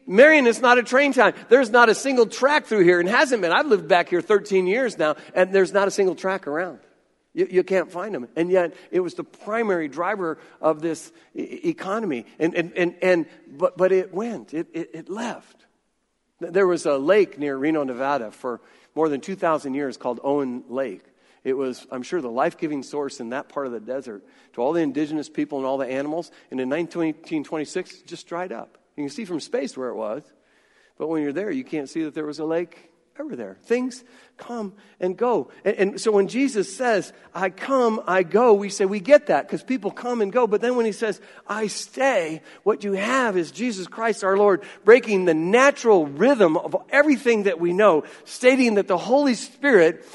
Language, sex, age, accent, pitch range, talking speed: English, male, 50-69, American, 160-230 Hz, 210 wpm